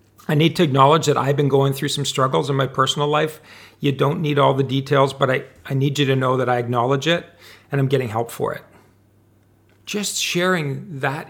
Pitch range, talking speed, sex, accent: 115-150 Hz, 220 wpm, male, American